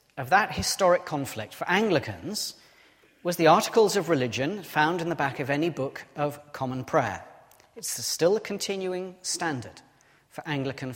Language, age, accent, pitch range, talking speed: English, 40-59, British, 135-185 Hz, 155 wpm